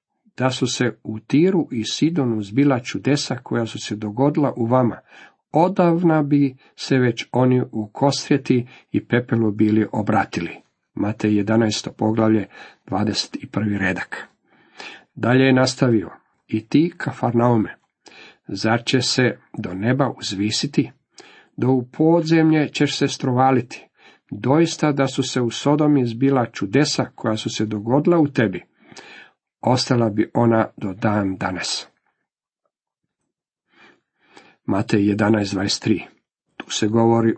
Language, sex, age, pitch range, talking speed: Croatian, male, 50-69, 110-135 Hz, 115 wpm